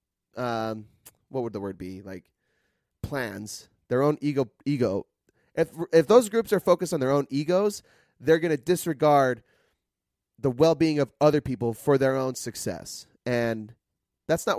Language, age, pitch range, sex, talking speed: English, 30-49, 115-150 Hz, male, 160 wpm